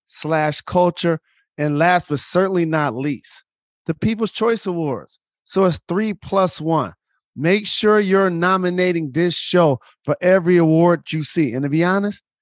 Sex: male